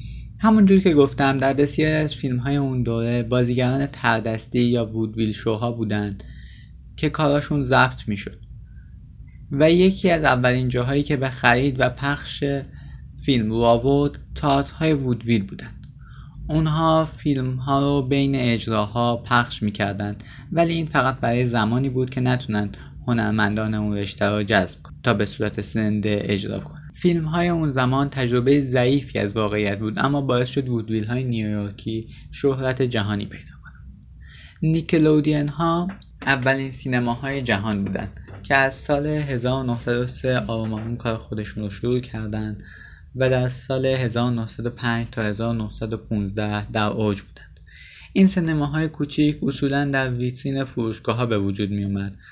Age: 20-39